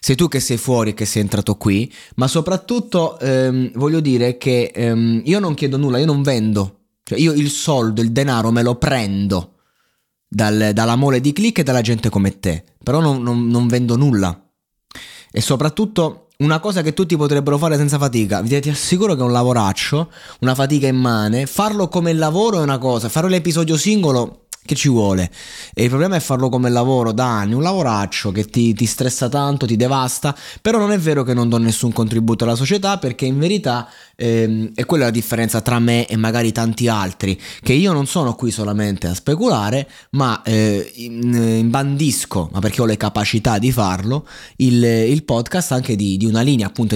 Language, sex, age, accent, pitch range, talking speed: Italian, male, 20-39, native, 110-145 Hz, 190 wpm